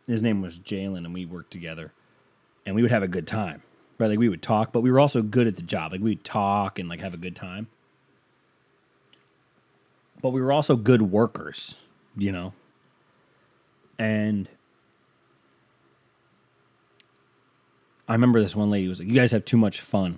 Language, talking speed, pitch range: English, 175 wpm, 70-110 Hz